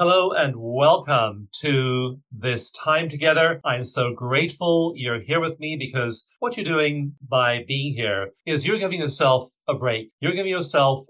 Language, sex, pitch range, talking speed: English, male, 120-155 Hz, 160 wpm